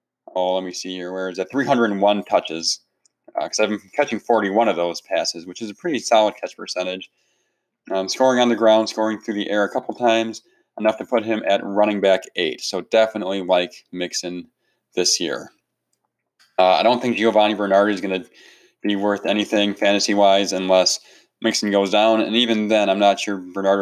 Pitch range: 95-115 Hz